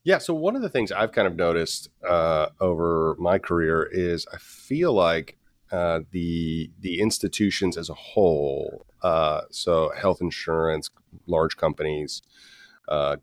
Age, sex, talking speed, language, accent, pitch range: 40-59, male, 145 wpm, English, American, 80-95 Hz